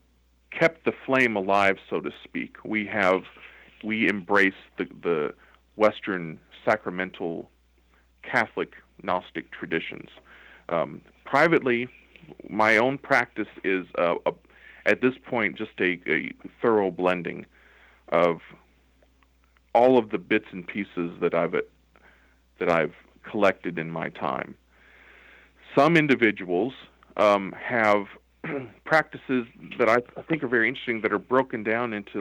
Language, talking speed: English, 120 wpm